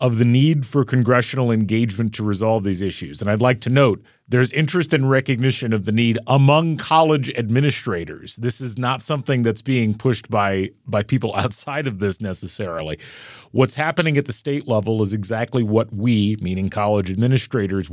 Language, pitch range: English, 105-130 Hz